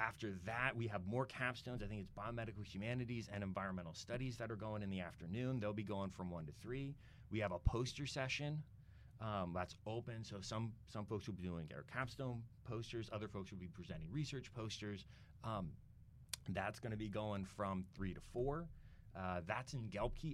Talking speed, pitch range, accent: 190 wpm, 95-120 Hz, American